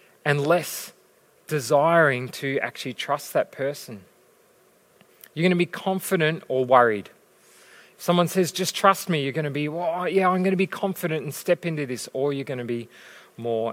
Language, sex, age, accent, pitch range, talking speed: English, male, 30-49, Australian, 130-180 Hz, 185 wpm